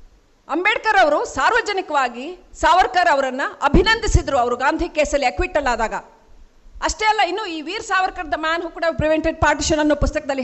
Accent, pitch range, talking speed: native, 275-385 Hz, 125 wpm